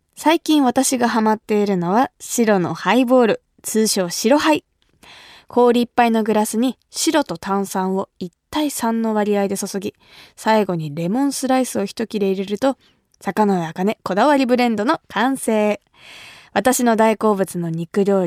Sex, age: female, 20-39